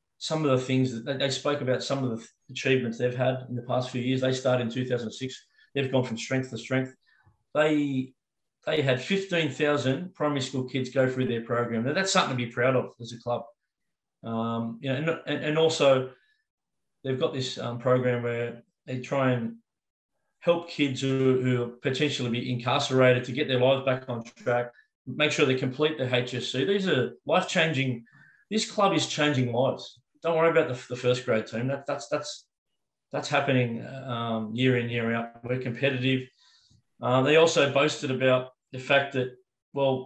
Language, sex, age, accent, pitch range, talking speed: English, male, 20-39, Australian, 125-145 Hz, 185 wpm